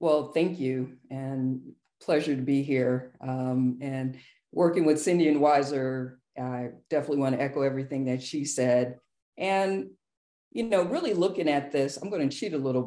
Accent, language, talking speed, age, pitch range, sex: American, English, 175 wpm, 50-69, 125-145 Hz, female